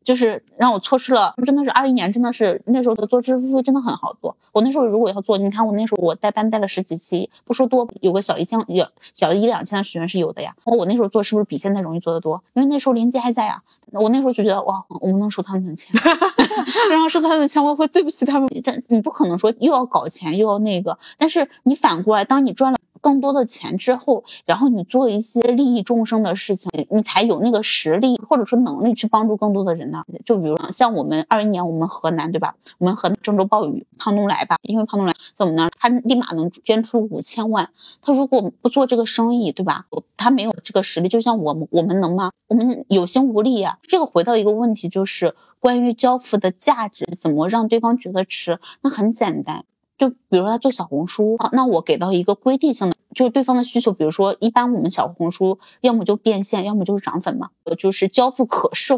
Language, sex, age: Chinese, female, 20-39